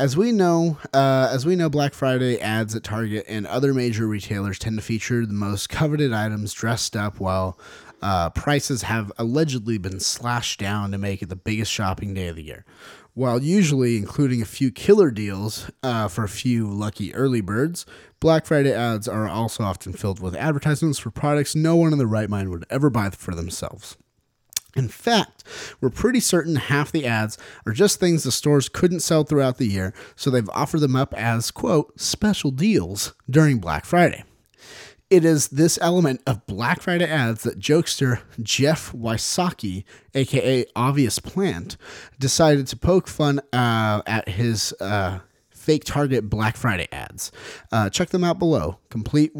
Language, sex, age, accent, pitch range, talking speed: English, male, 30-49, American, 105-150 Hz, 175 wpm